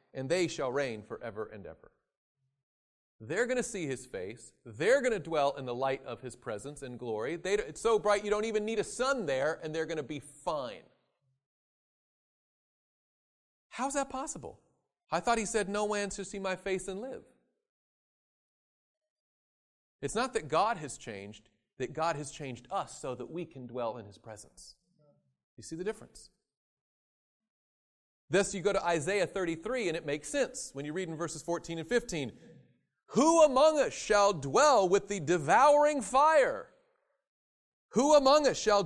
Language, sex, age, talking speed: English, male, 40-59, 170 wpm